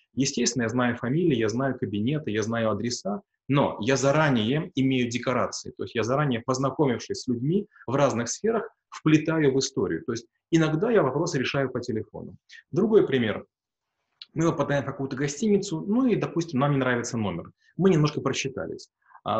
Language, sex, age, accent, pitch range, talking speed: Russian, male, 20-39, native, 125-155 Hz, 165 wpm